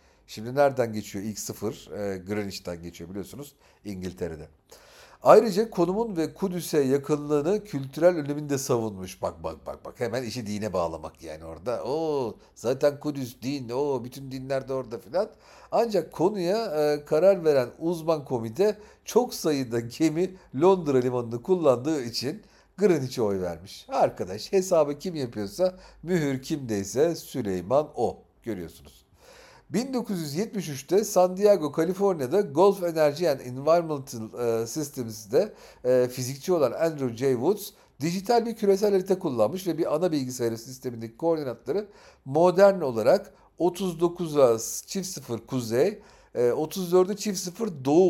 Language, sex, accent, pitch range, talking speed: Turkish, male, native, 110-180 Hz, 120 wpm